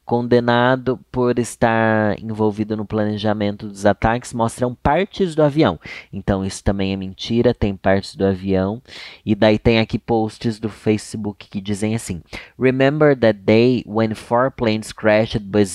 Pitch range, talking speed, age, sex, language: 105-130 Hz, 150 wpm, 20-39, male, Portuguese